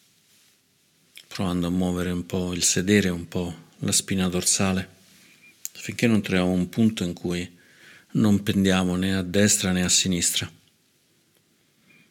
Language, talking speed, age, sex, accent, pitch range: Italian, 135 wpm, 50-69, male, native, 90-100 Hz